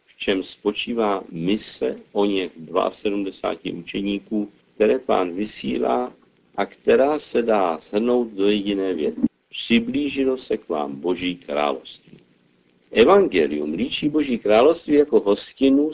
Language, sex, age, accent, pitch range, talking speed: Czech, male, 50-69, native, 90-125 Hz, 115 wpm